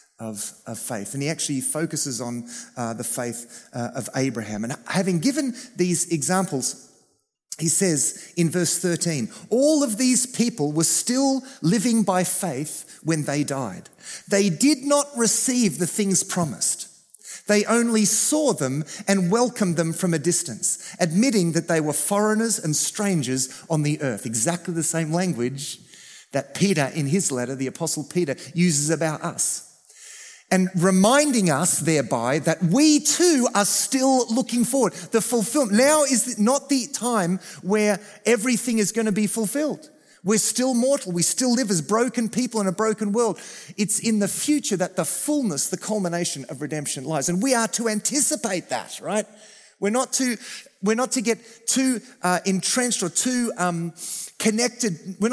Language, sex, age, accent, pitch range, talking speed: English, male, 30-49, Australian, 160-230 Hz, 165 wpm